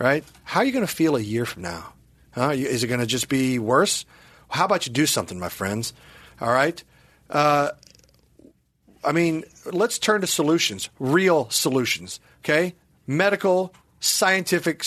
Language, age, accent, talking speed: English, 40-59, American, 160 wpm